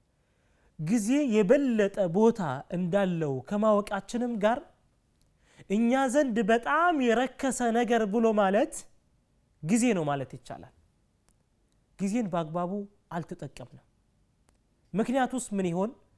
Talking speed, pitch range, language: 85 wpm, 180-235 Hz, Amharic